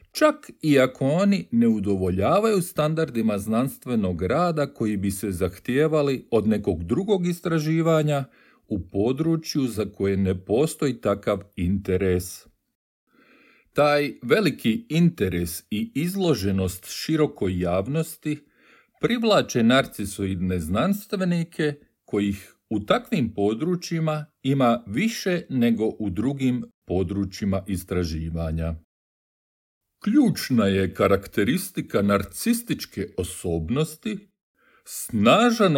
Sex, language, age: male, Croatian, 40-59